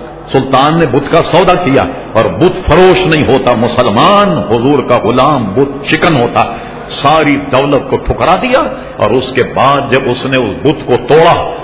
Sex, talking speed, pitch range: male, 165 wpm, 120-155 Hz